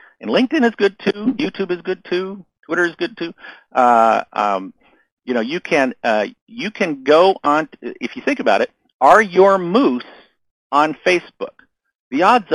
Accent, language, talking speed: American, English, 175 wpm